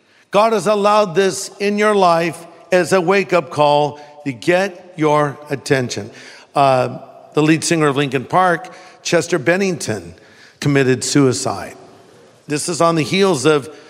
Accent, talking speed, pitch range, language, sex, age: American, 140 wpm, 145-185 Hz, English, male, 50-69